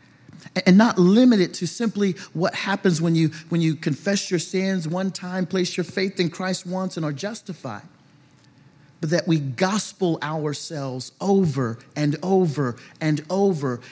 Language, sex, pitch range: English, male, 140-185 Hz